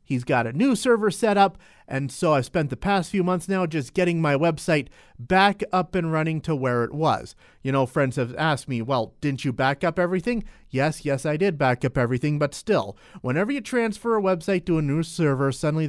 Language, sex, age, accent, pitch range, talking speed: English, male, 40-59, American, 135-190 Hz, 225 wpm